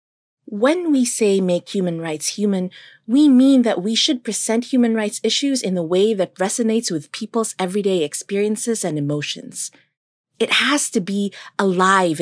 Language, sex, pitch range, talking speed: Filipino, female, 185-240 Hz, 155 wpm